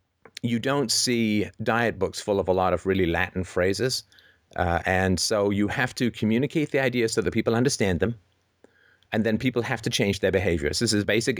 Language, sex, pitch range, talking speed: English, male, 90-110 Hz, 200 wpm